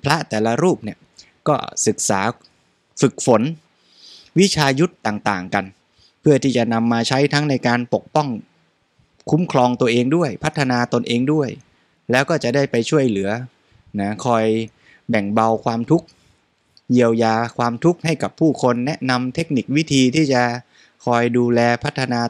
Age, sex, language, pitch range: 20-39, male, Thai, 110-130 Hz